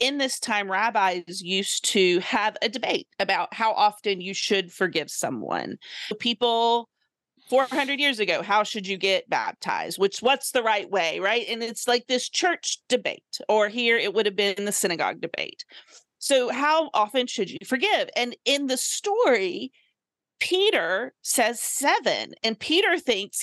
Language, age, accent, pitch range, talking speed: English, 40-59, American, 200-270 Hz, 160 wpm